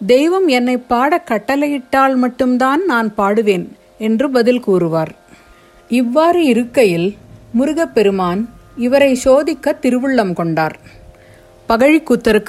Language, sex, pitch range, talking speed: Tamil, female, 195-265 Hz, 85 wpm